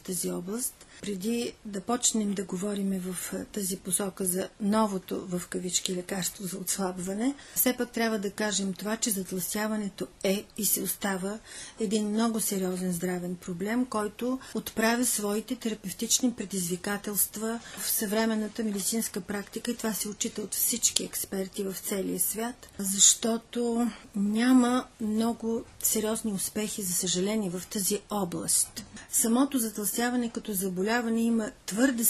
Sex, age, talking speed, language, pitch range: female, 40-59, 130 wpm, Bulgarian, 195-230 Hz